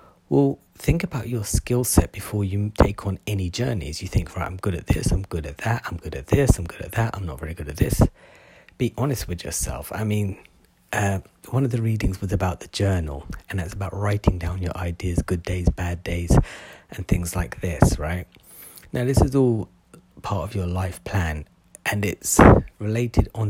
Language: English